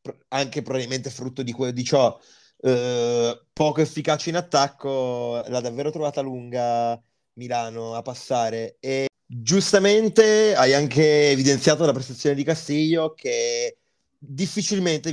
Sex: male